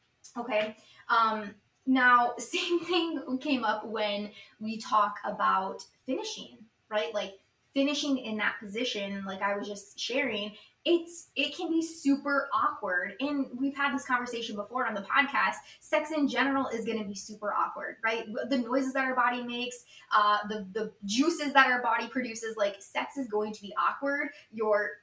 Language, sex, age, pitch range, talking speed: English, female, 20-39, 210-275 Hz, 170 wpm